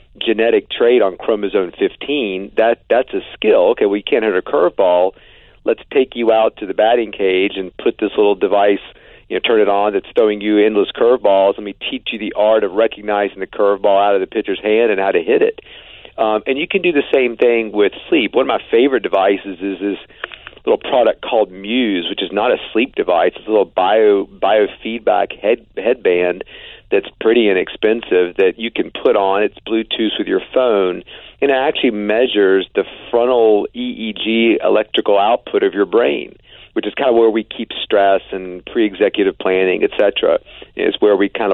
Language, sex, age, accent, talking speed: English, male, 50-69, American, 195 wpm